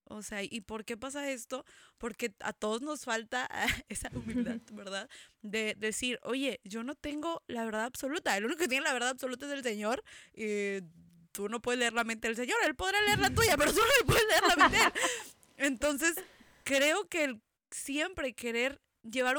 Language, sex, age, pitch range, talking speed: English, female, 20-39, 225-285 Hz, 195 wpm